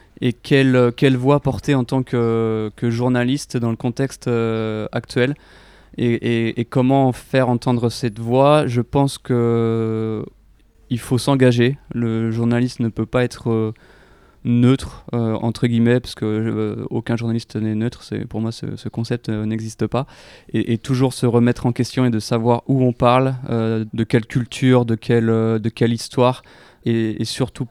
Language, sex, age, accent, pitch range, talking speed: English, male, 20-39, French, 115-125 Hz, 175 wpm